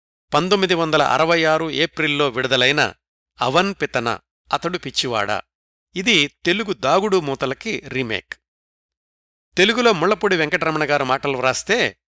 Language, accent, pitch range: Telugu, native, 115-170 Hz